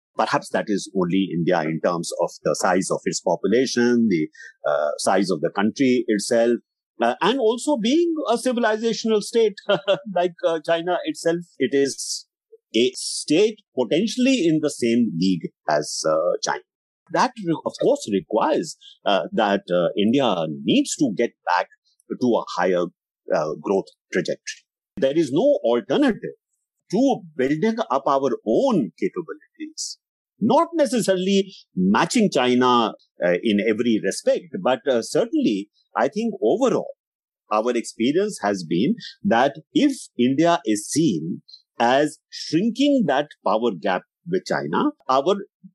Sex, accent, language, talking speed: male, Indian, English, 135 wpm